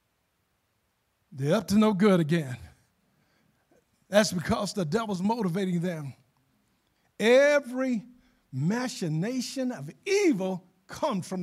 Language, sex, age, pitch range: English, male, 50-69, 190-305 Hz